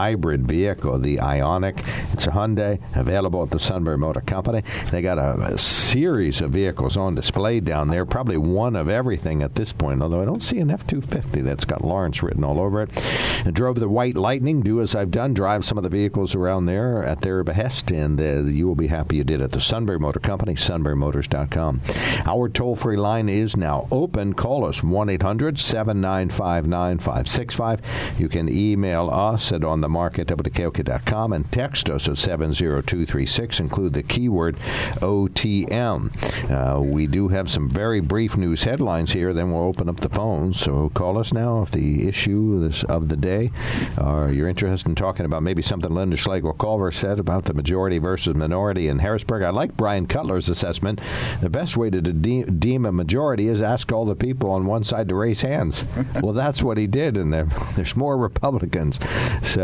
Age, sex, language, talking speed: 60-79, male, English, 185 wpm